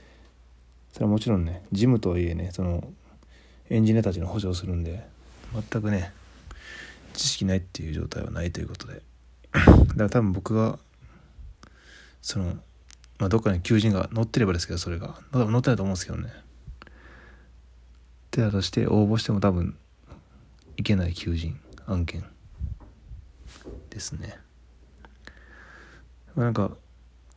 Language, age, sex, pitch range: Japanese, 20-39, male, 70-105 Hz